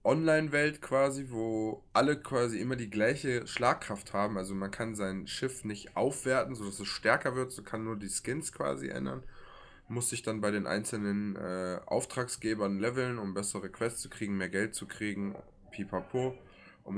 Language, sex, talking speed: German, male, 170 wpm